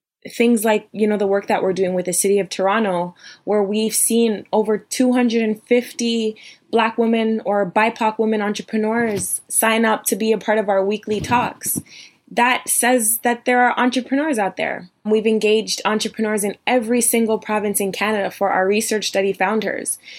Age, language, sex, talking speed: 20-39, English, female, 170 wpm